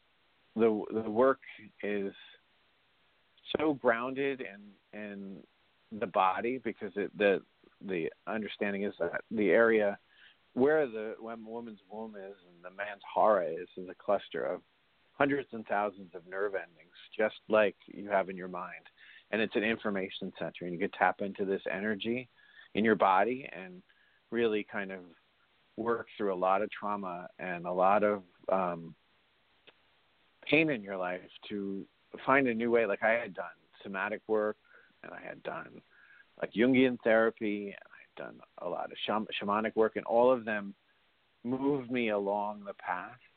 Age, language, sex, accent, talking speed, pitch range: 50-69, English, male, American, 165 wpm, 95-115 Hz